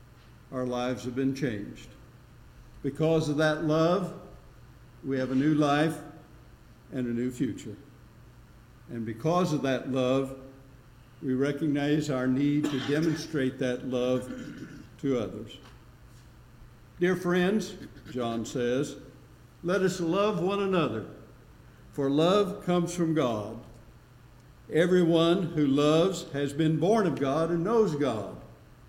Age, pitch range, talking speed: 60-79, 125-165 Hz, 120 wpm